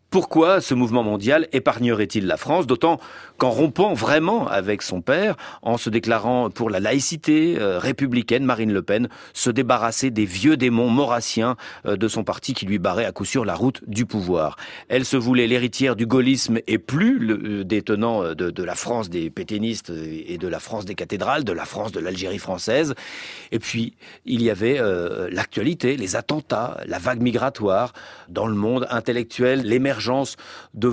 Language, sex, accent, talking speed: French, male, French, 175 wpm